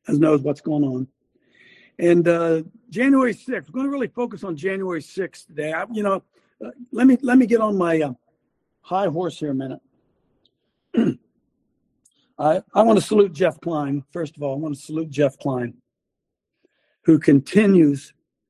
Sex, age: male, 60-79